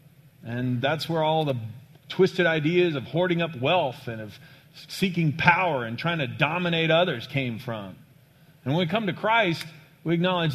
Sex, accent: male, American